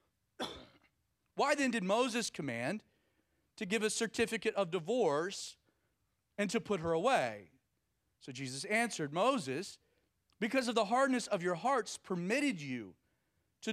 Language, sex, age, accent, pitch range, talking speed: English, male, 40-59, American, 140-230 Hz, 130 wpm